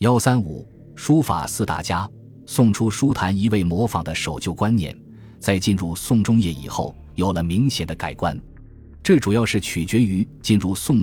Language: Chinese